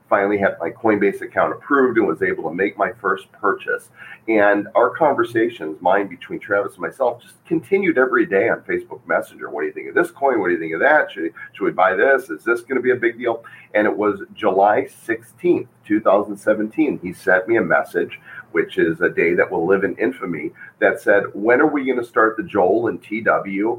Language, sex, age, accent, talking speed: English, male, 40-59, American, 220 wpm